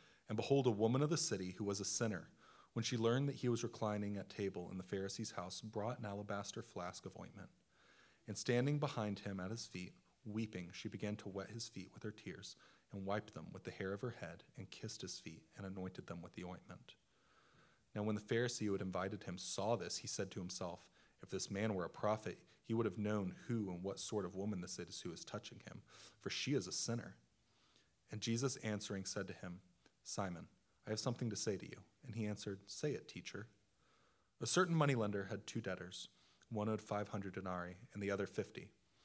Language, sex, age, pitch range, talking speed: English, male, 30-49, 100-115 Hz, 215 wpm